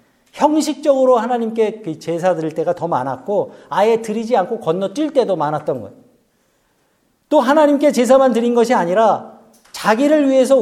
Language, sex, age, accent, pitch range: Korean, male, 40-59, native, 175-255 Hz